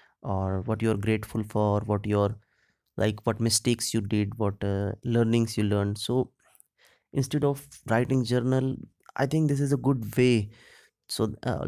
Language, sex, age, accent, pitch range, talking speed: English, male, 20-39, Indian, 105-120 Hz, 165 wpm